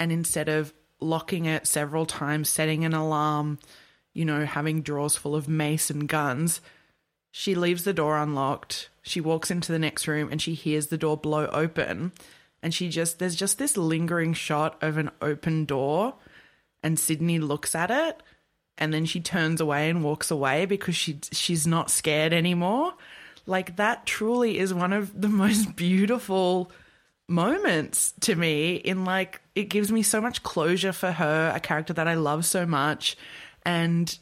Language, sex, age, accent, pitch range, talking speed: English, female, 20-39, Australian, 155-185 Hz, 170 wpm